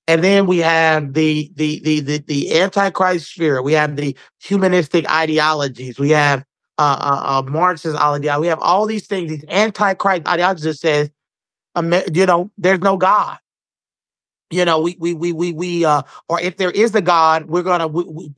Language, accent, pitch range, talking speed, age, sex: English, American, 160-190 Hz, 180 wpm, 30-49, male